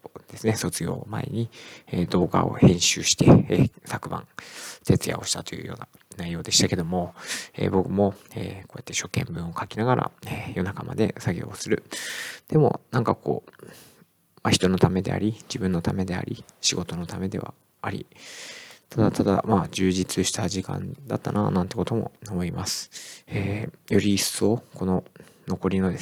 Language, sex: Japanese, male